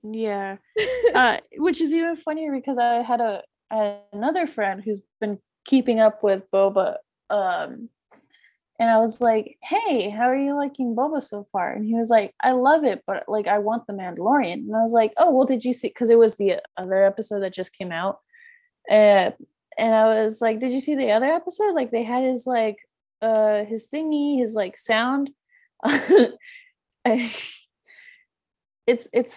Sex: female